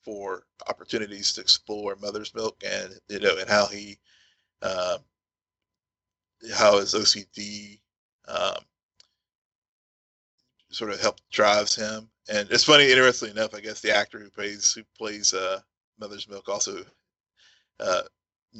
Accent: American